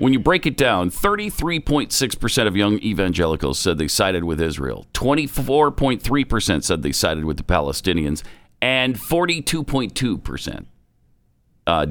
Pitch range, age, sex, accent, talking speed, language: 85-130 Hz, 50-69, male, American, 115 wpm, English